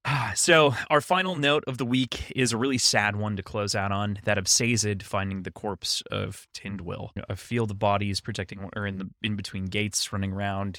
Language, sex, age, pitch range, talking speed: English, male, 20-39, 90-105 Hz, 205 wpm